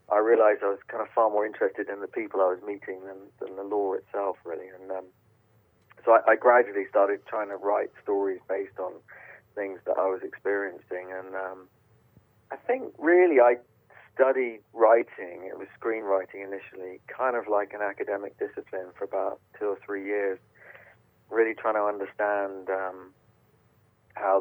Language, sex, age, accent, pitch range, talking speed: English, male, 40-59, British, 95-120 Hz, 170 wpm